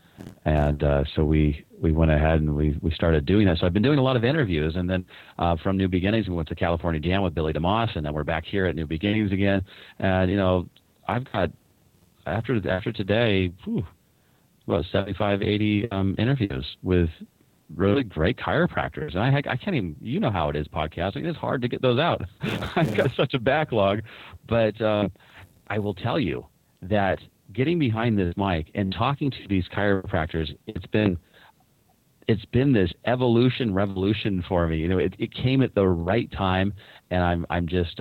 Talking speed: 195 wpm